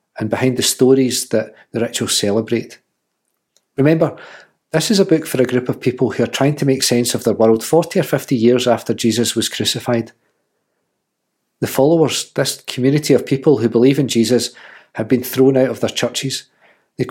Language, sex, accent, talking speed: English, male, British, 185 wpm